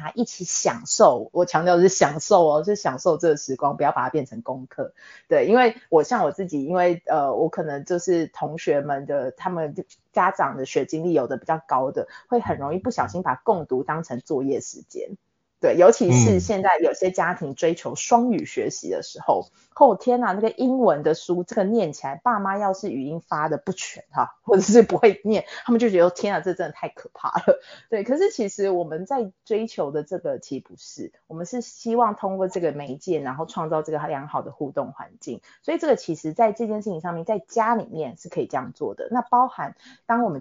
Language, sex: Chinese, female